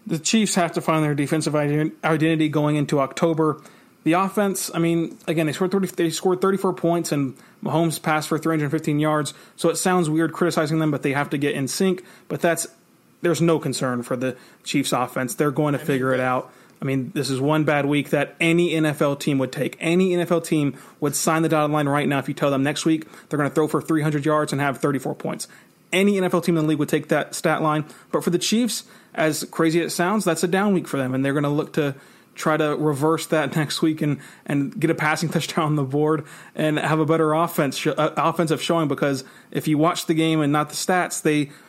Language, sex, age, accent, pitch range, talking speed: English, male, 30-49, American, 150-170 Hz, 235 wpm